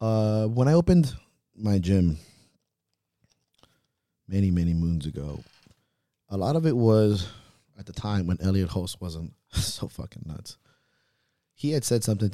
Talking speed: 140 wpm